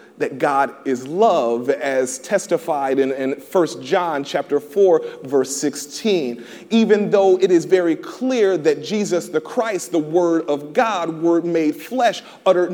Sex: male